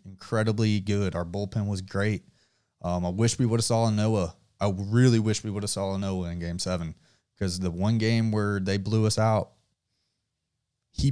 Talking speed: 200 wpm